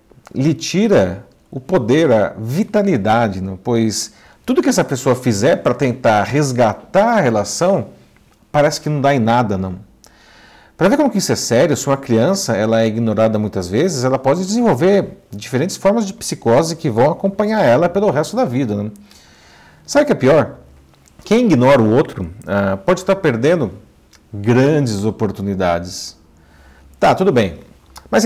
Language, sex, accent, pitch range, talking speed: Portuguese, male, Brazilian, 105-175 Hz, 145 wpm